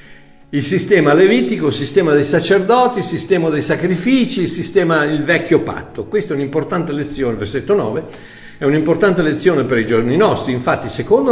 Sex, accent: male, native